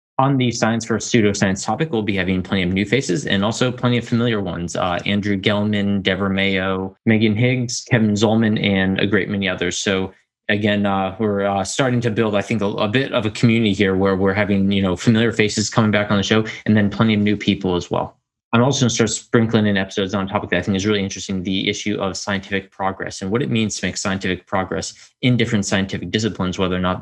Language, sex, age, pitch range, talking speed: English, male, 20-39, 95-115 Hz, 240 wpm